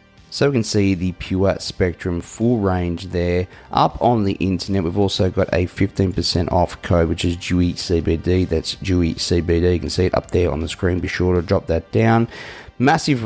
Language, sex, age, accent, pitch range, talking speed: English, male, 30-49, Australian, 85-100 Hz, 190 wpm